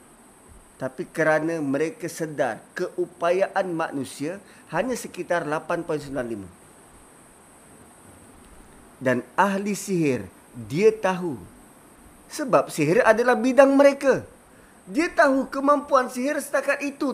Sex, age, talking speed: male, 30-49, 90 wpm